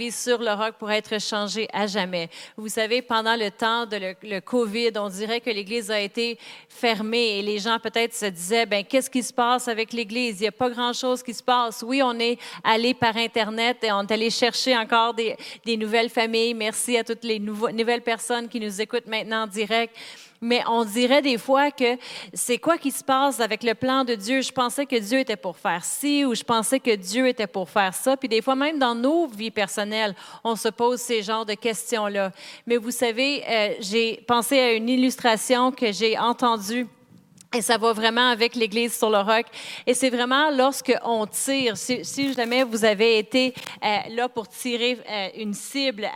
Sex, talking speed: female, 210 wpm